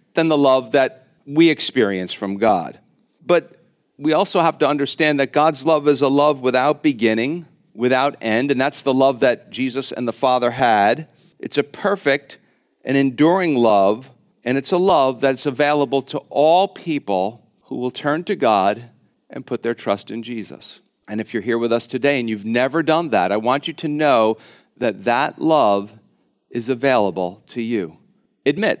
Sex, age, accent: male, 50-69, American